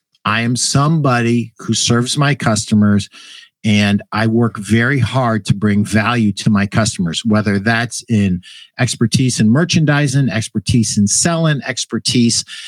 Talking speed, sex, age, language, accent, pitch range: 135 wpm, male, 50-69, English, American, 115-155 Hz